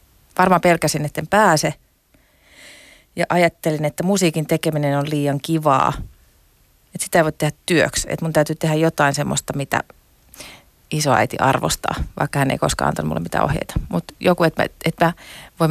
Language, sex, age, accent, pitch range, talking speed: Finnish, female, 30-49, native, 150-180 Hz, 160 wpm